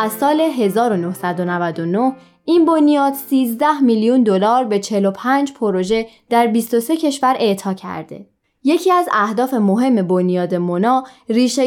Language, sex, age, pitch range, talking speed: Persian, female, 20-39, 195-255 Hz, 120 wpm